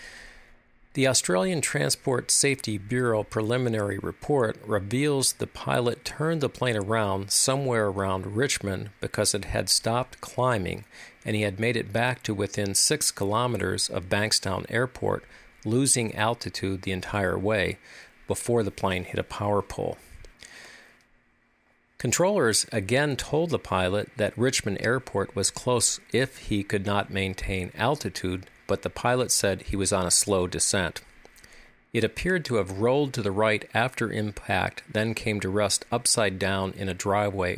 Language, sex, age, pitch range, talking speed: English, male, 50-69, 95-120 Hz, 145 wpm